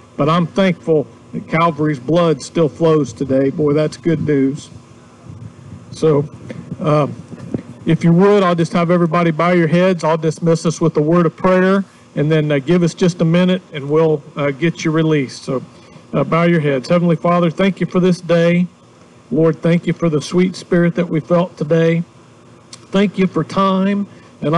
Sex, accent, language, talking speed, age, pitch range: male, American, English, 185 wpm, 50-69, 150-175 Hz